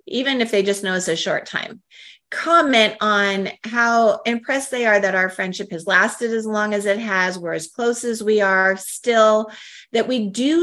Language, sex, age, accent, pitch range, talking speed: English, female, 30-49, American, 195-260 Hz, 200 wpm